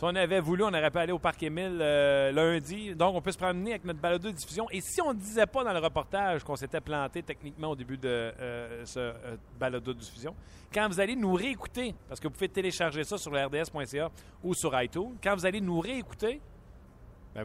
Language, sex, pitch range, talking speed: French, male, 130-180 Hz, 230 wpm